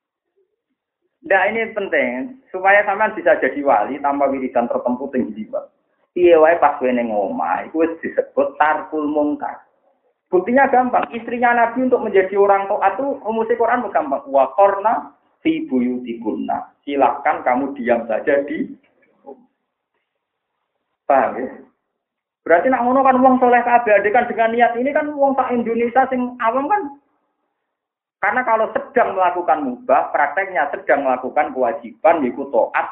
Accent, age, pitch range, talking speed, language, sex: native, 40-59, 175-270 Hz, 130 wpm, Indonesian, male